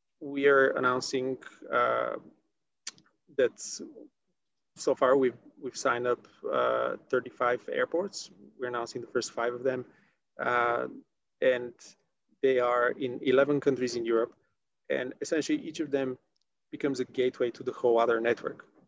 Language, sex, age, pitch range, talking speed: English, male, 30-49, 120-140 Hz, 135 wpm